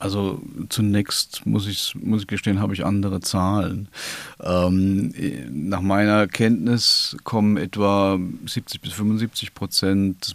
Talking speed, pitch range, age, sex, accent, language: 130 wpm, 95-115 Hz, 40-59, male, German, German